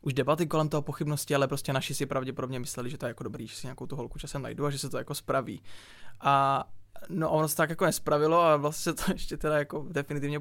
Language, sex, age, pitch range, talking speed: Czech, male, 20-39, 135-155 Hz, 255 wpm